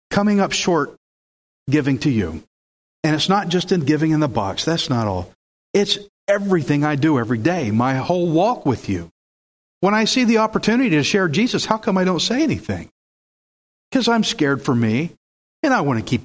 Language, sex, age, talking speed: English, male, 50-69, 195 wpm